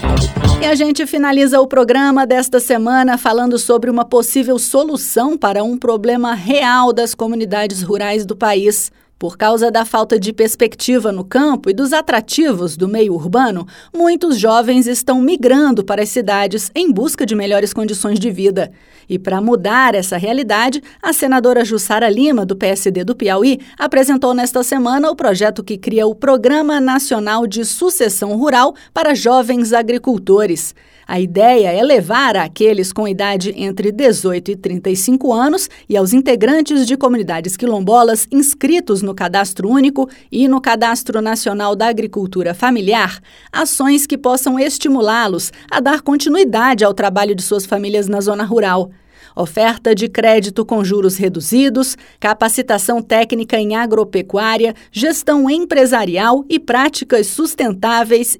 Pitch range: 205-265 Hz